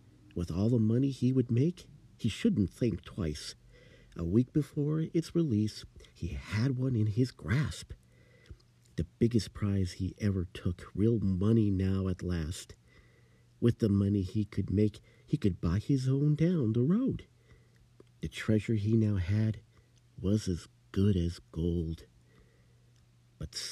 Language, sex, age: English, male, 50-69